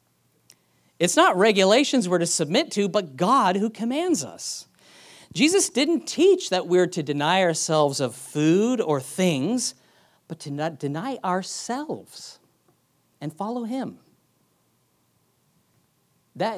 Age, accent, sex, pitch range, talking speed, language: 40-59, American, male, 150-225 Hz, 115 wpm, English